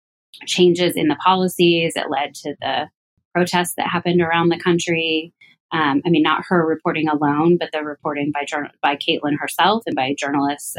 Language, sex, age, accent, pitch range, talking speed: English, female, 20-39, American, 145-170 Hz, 180 wpm